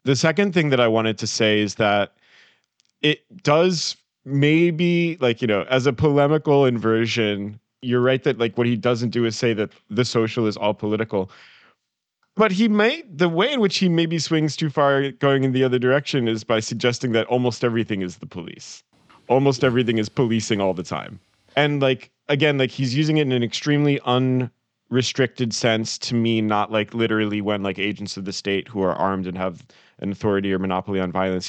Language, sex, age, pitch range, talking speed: English, male, 30-49, 110-140 Hz, 195 wpm